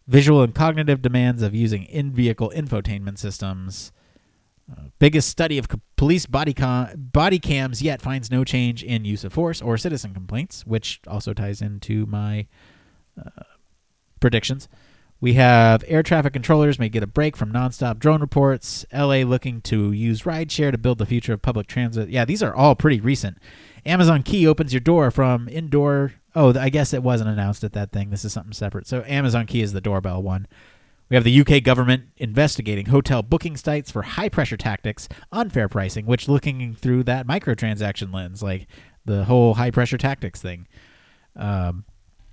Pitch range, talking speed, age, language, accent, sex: 105-145 Hz, 175 wpm, 30-49, English, American, male